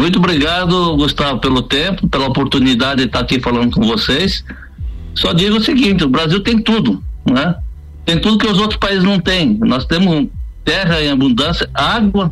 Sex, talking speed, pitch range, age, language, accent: male, 175 wpm, 125-195 Hz, 60-79, Portuguese, Brazilian